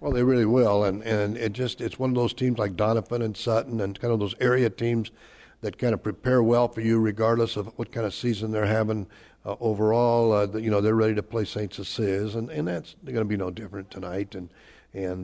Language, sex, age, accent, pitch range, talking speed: English, male, 60-79, American, 100-115 Hz, 245 wpm